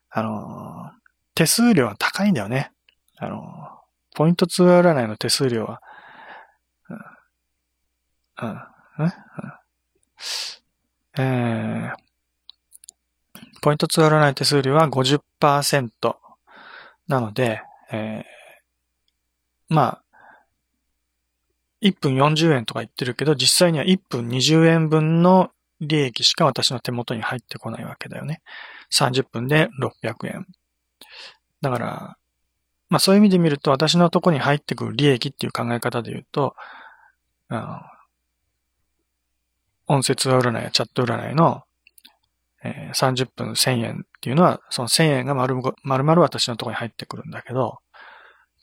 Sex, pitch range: male, 115-155 Hz